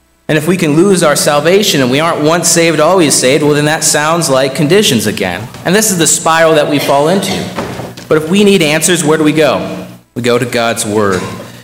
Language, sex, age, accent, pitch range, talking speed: English, male, 40-59, American, 125-165 Hz, 225 wpm